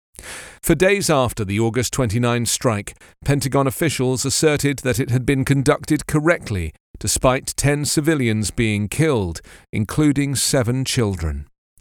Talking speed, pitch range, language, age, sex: 120 wpm, 110-150 Hz, English, 40-59, male